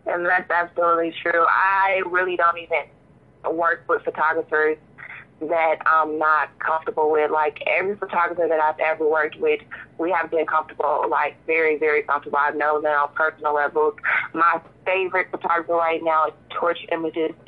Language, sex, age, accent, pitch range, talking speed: English, female, 20-39, American, 155-175 Hz, 160 wpm